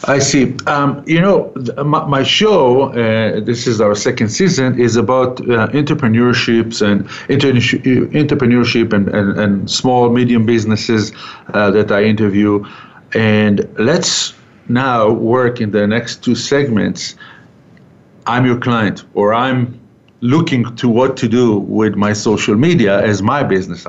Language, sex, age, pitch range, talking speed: English, male, 50-69, 110-135 Hz, 145 wpm